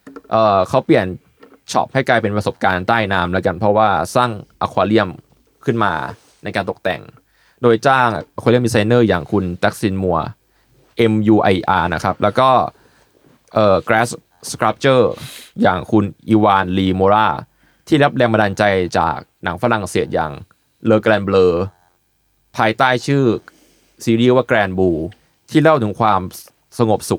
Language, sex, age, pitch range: Thai, male, 20-39, 95-125 Hz